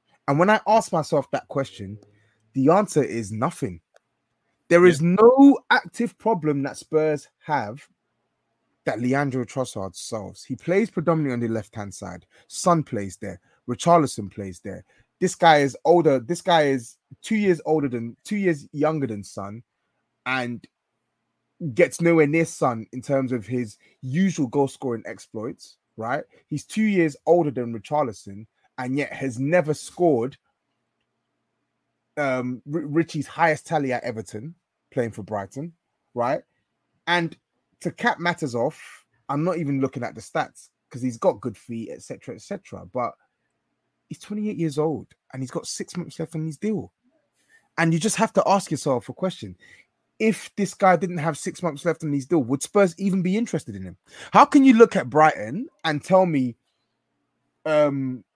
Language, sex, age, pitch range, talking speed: English, male, 20-39, 120-175 Hz, 165 wpm